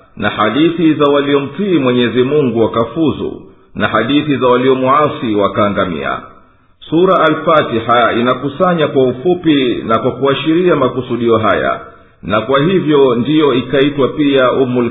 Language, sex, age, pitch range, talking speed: Swahili, male, 50-69, 95-130 Hz, 120 wpm